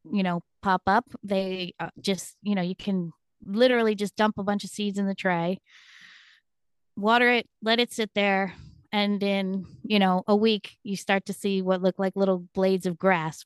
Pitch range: 190-225 Hz